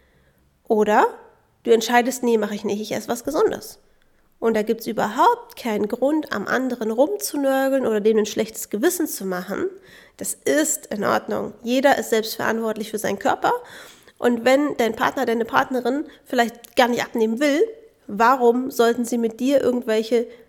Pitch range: 210-260 Hz